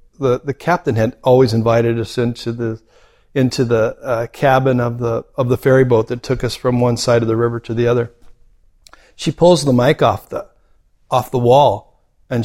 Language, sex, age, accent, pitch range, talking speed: English, male, 60-79, American, 120-150 Hz, 200 wpm